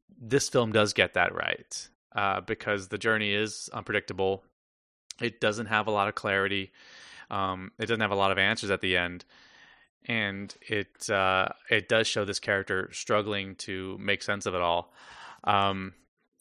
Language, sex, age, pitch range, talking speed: English, male, 20-39, 95-110 Hz, 170 wpm